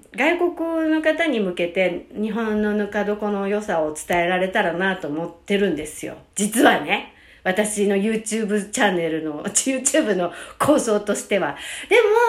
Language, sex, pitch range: Japanese, female, 175-280 Hz